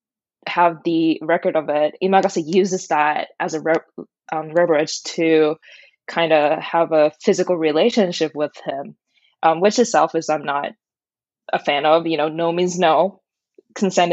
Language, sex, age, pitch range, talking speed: English, female, 20-39, 160-195 Hz, 155 wpm